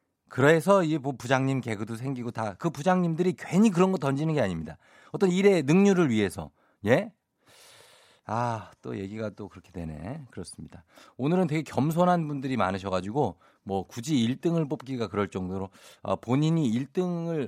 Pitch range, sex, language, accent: 100-165 Hz, male, Korean, native